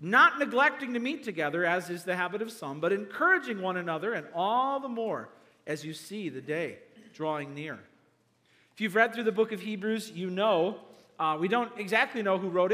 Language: English